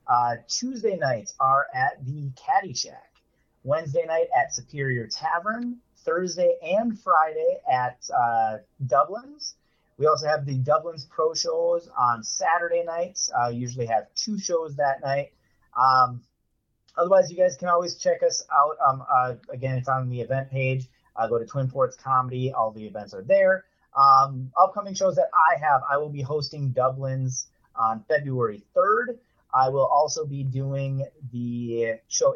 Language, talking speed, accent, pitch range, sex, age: English, 160 wpm, American, 125-180 Hz, male, 30-49